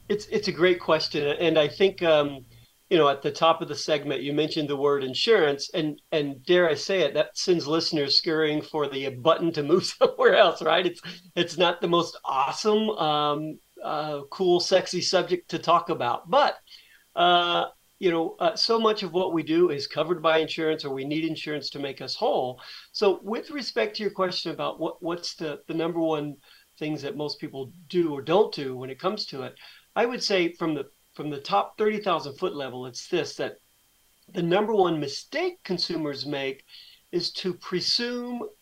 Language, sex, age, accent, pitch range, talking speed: English, male, 40-59, American, 155-195 Hz, 195 wpm